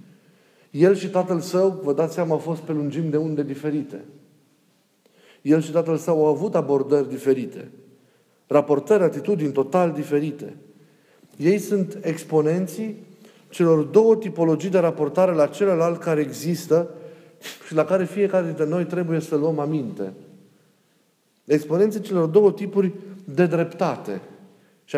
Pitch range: 145-185 Hz